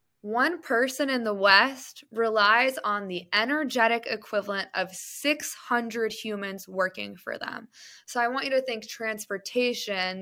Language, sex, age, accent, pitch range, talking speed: English, female, 20-39, American, 200-245 Hz, 135 wpm